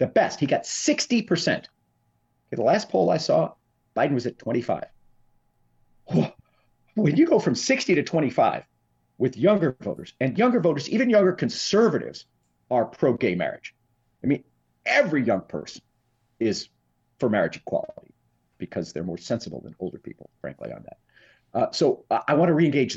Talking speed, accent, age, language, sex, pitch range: 155 wpm, American, 50-69, English, male, 110-180 Hz